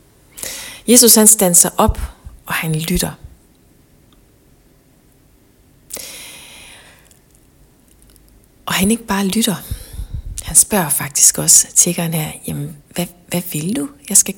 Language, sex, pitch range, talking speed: Danish, female, 160-215 Hz, 105 wpm